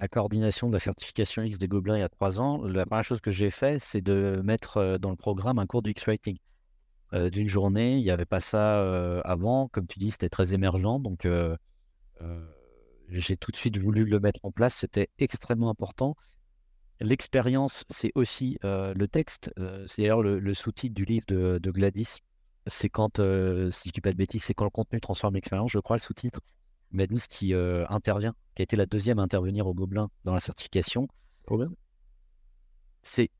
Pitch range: 90-110 Hz